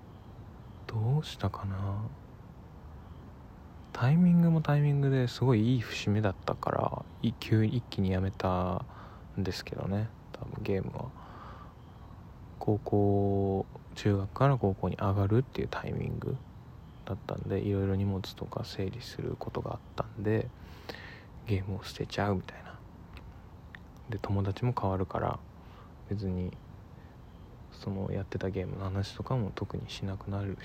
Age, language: 20-39, Japanese